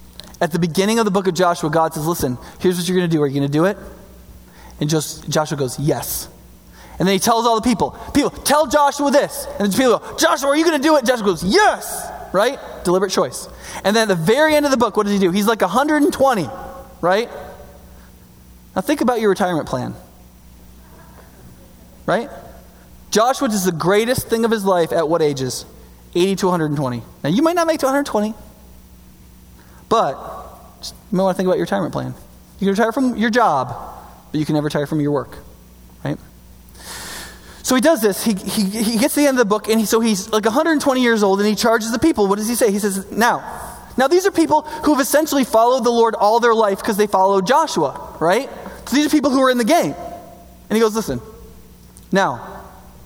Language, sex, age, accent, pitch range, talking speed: English, male, 20-39, American, 145-240 Hz, 215 wpm